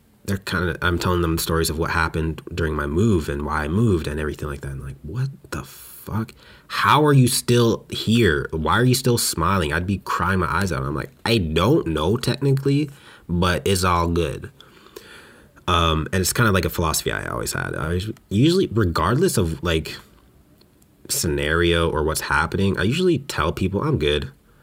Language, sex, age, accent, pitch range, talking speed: English, male, 30-49, American, 80-110 Hz, 190 wpm